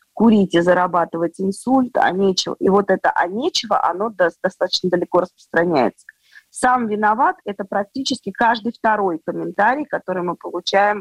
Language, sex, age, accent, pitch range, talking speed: Russian, female, 20-39, native, 180-215 Hz, 140 wpm